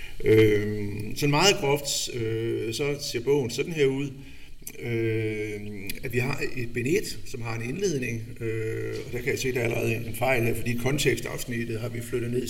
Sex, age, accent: male, 60-79, native